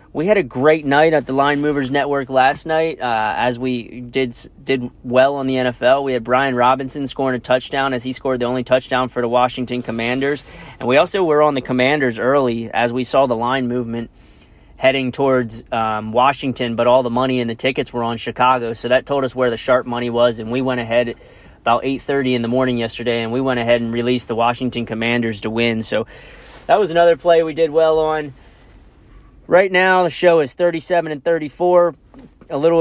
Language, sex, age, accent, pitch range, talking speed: English, male, 30-49, American, 125-145 Hz, 210 wpm